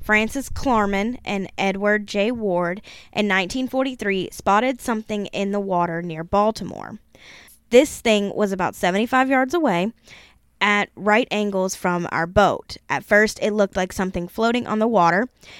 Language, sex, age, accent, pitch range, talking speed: English, female, 10-29, American, 185-225 Hz, 145 wpm